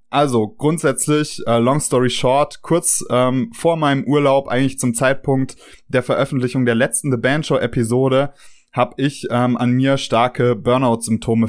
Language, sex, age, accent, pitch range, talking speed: German, male, 20-39, German, 115-130 Hz, 145 wpm